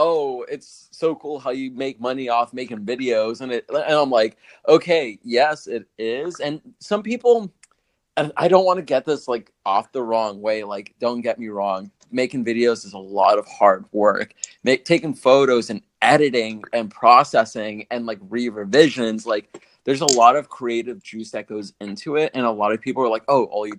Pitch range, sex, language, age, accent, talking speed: 110-145 Hz, male, English, 30-49, American, 200 wpm